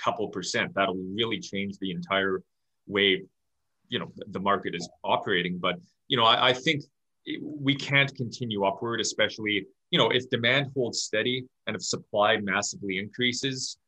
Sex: male